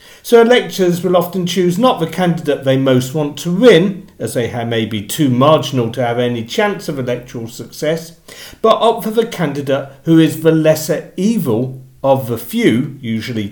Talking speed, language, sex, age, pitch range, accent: 180 wpm, English, male, 50-69, 125-185 Hz, British